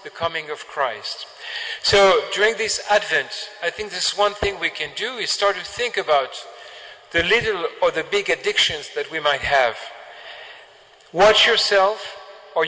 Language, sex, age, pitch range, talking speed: English, male, 40-59, 165-210 Hz, 160 wpm